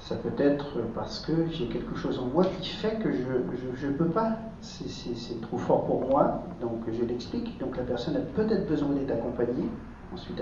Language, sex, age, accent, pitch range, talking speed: French, male, 50-69, French, 120-170 Hz, 220 wpm